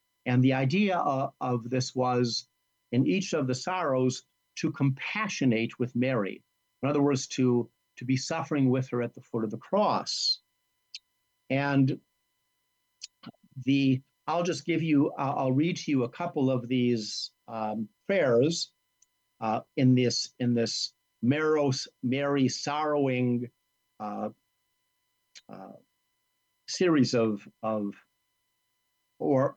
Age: 50-69